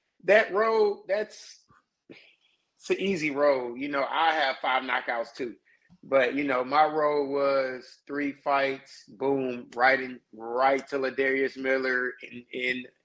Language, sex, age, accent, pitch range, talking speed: English, male, 20-39, American, 125-145 Hz, 145 wpm